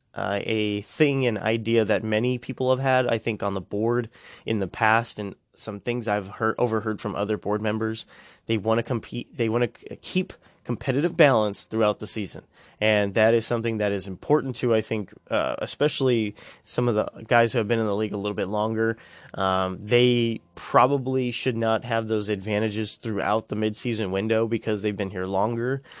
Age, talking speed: 20-39, 195 wpm